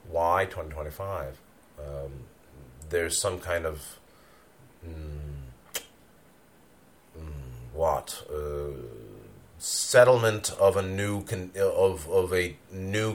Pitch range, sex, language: 75-100 Hz, male, English